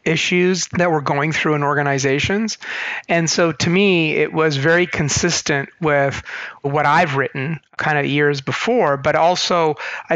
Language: English